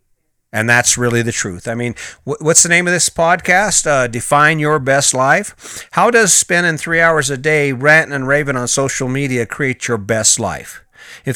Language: English